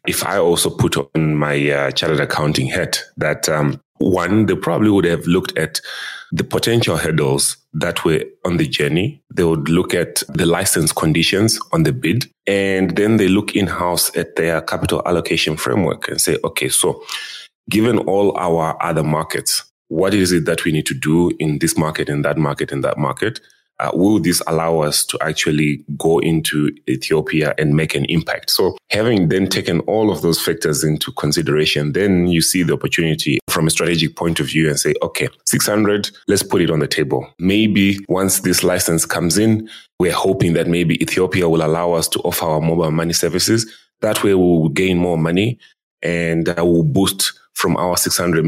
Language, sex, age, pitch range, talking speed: English, male, 30-49, 80-95 Hz, 190 wpm